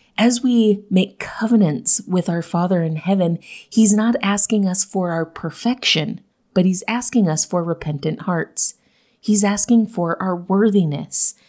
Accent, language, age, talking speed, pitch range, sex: American, English, 30-49, 145 wpm, 170-215 Hz, female